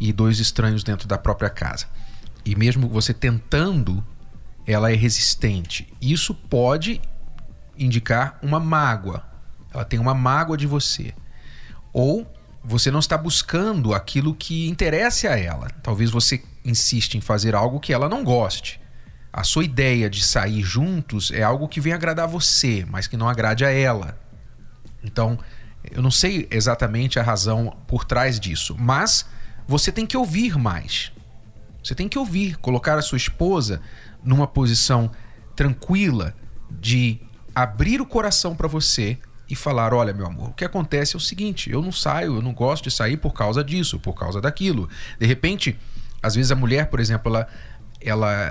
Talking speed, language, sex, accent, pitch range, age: 165 wpm, Portuguese, male, Brazilian, 110-150 Hz, 40-59